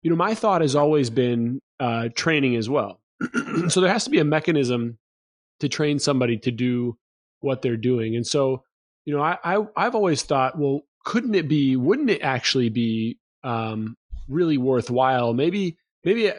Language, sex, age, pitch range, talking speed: English, male, 30-49, 120-150 Hz, 175 wpm